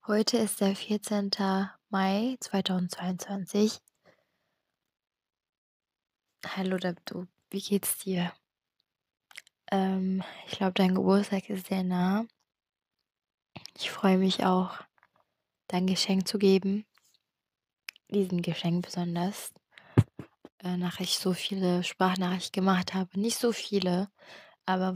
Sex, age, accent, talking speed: female, 20-39, German, 100 wpm